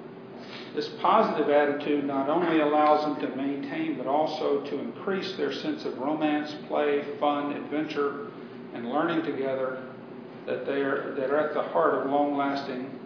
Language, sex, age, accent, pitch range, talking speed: English, male, 50-69, American, 130-155 Hz, 140 wpm